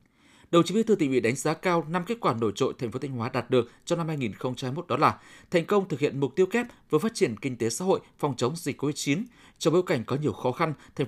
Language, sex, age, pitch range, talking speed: Vietnamese, male, 20-39, 125-175 Hz, 275 wpm